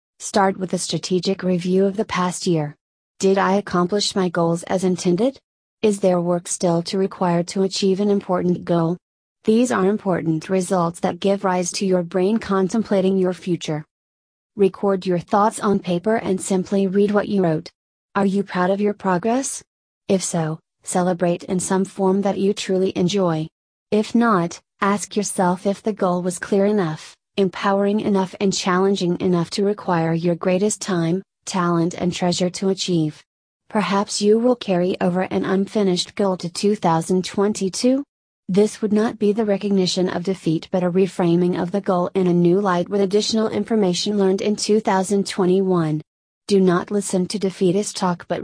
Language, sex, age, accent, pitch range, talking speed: English, female, 30-49, American, 175-200 Hz, 165 wpm